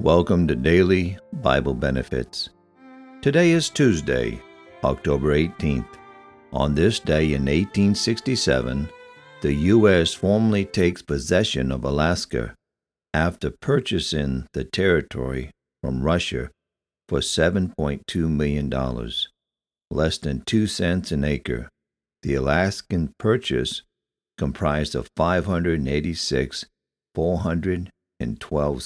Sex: male